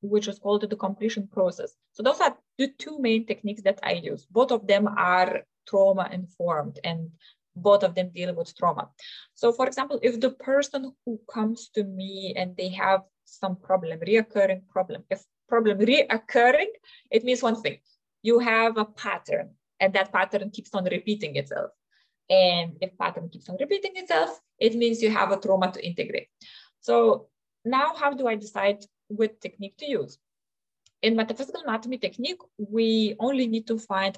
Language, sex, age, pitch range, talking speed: English, female, 20-39, 190-250 Hz, 170 wpm